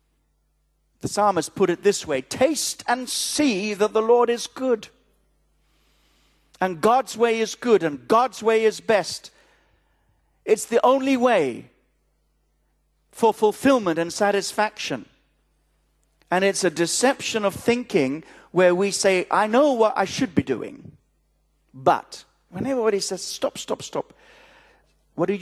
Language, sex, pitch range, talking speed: English, male, 170-245 Hz, 135 wpm